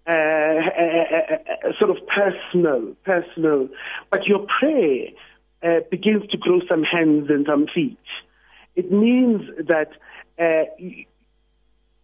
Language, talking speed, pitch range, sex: English, 120 wpm, 160-215 Hz, male